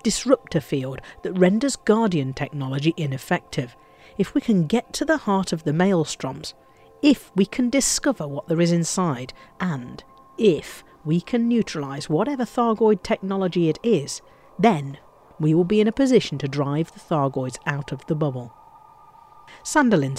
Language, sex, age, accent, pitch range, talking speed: English, female, 50-69, British, 145-220 Hz, 150 wpm